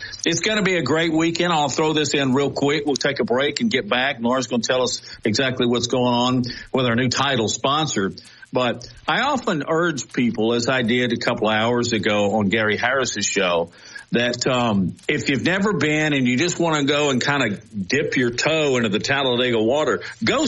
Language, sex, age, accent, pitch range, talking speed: English, male, 50-69, American, 110-155 Hz, 215 wpm